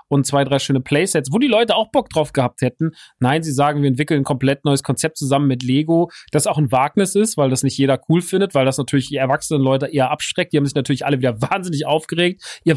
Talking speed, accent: 250 wpm, German